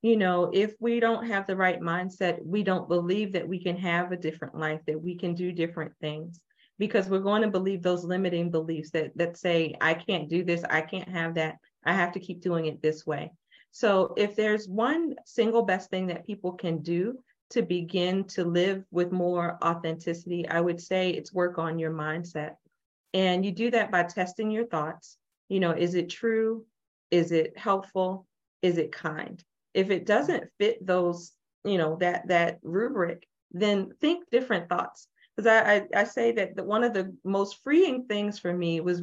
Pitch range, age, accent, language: 170-205 Hz, 40-59, American, English